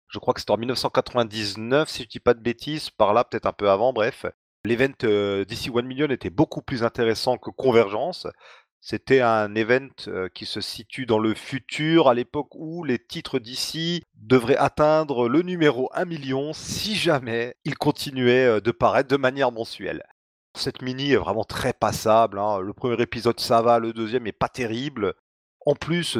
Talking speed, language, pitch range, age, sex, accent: 180 wpm, French, 110-135 Hz, 30-49, male, French